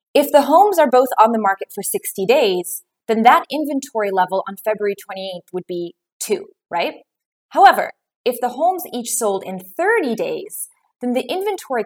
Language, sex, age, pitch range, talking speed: English, female, 20-39, 190-260 Hz, 170 wpm